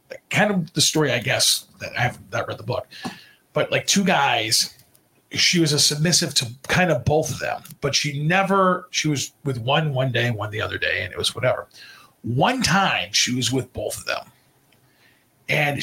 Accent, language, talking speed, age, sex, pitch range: American, English, 200 wpm, 40-59, male, 135-180 Hz